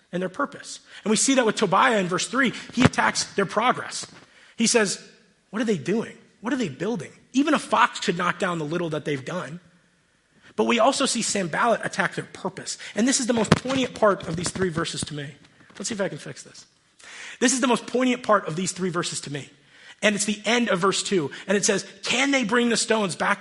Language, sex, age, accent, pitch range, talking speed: English, male, 30-49, American, 175-215 Hz, 240 wpm